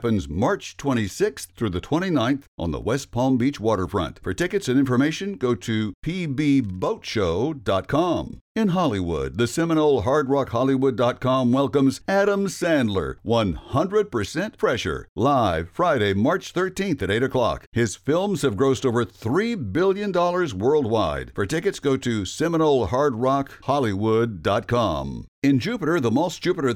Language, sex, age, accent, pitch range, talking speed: English, male, 60-79, American, 120-175 Hz, 135 wpm